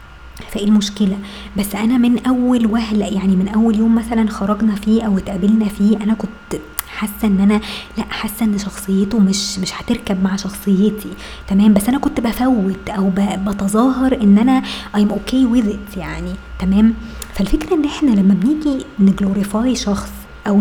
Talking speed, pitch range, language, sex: 155 wpm, 195-225 Hz, Arabic, male